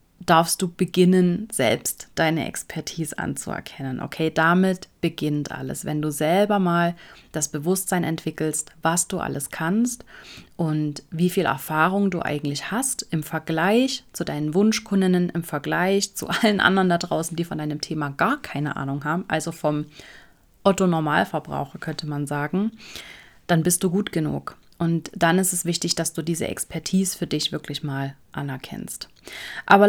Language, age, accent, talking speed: German, 30-49, German, 150 wpm